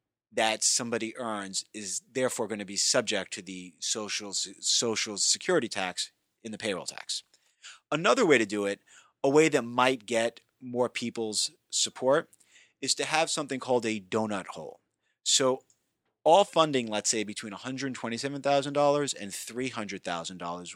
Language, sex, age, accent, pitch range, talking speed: English, male, 30-49, American, 105-140 Hz, 140 wpm